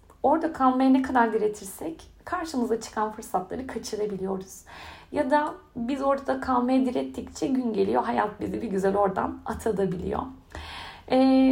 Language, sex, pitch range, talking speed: Turkish, female, 205-275 Hz, 125 wpm